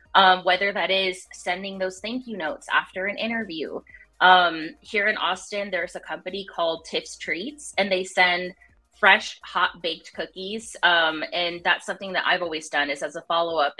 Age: 20-39